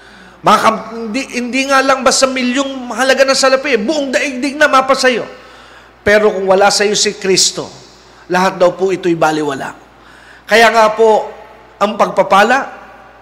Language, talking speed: Filipino, 140 wpm